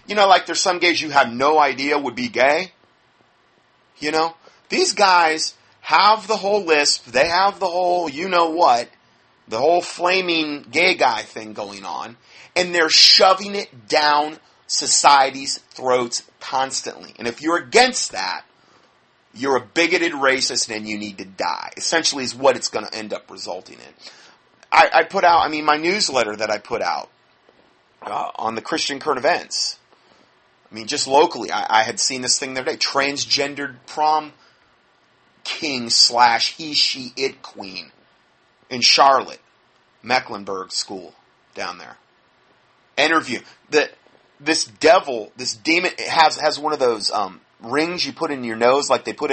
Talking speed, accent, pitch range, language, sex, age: 160 wpm, American, 125-165 Hz, English, male, 30-49